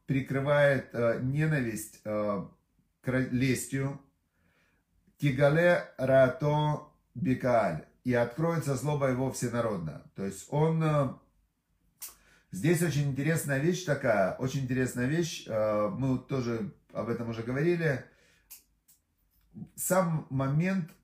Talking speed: 90 wpm